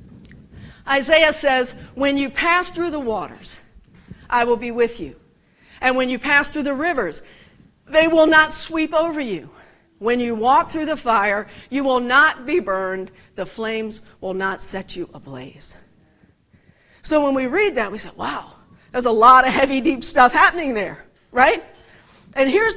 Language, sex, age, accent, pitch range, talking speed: English, female, 50-69, American, 240-320 Hz, 170 wpm